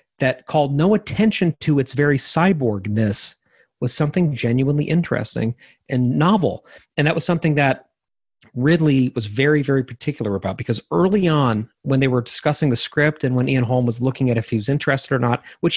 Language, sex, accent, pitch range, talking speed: English, male, American, 115-145 Hz, 185 wpm